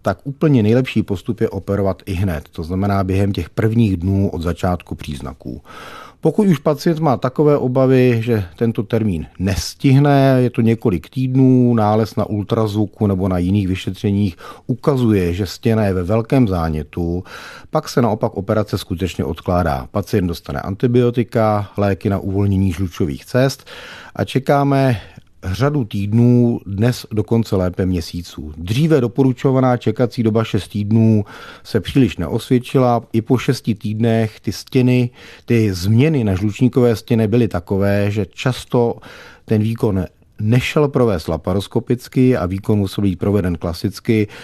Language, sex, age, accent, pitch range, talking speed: Czech, male, 40-59, native, 95-125 Hz, 140 wpm